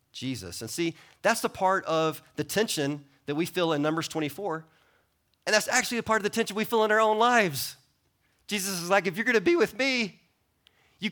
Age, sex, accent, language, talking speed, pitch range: 30-49, male, American, English, 215 wpm, 140-200 Hz